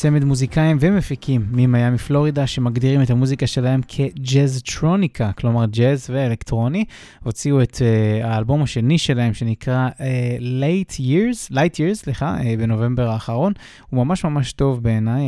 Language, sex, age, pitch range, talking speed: Hebrew, male, 20-39, 115-150 Hz, 135 wpm